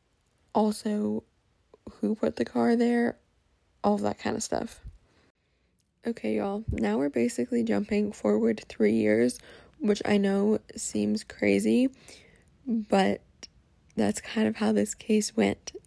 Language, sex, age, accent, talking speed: English, female, 20-39, American, 130 wpm